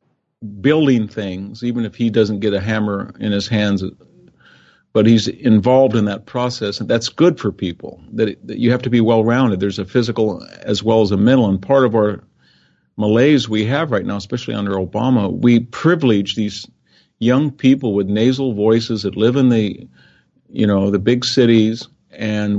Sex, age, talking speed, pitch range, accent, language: male, 50-69, 180 wpm, 100-120 Hz, American, English